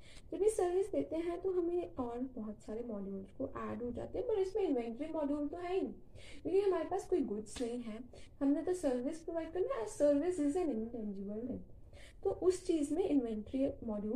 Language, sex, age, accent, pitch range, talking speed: Hindi, female, 10-29, native, 220-310 Hz, 155 wpm